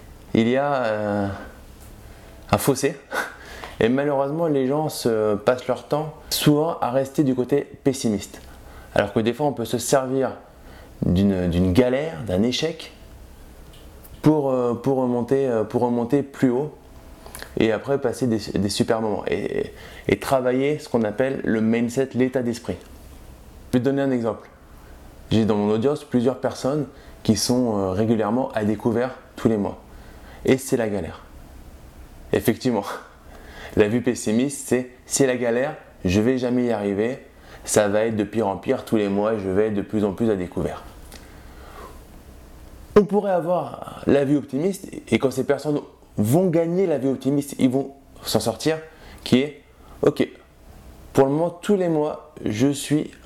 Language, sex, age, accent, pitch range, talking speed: French, male, 20-39, French, 95-135 Hz, 160 wpm